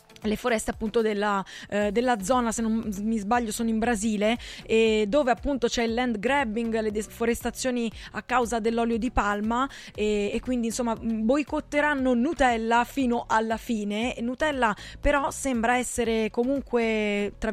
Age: 20-39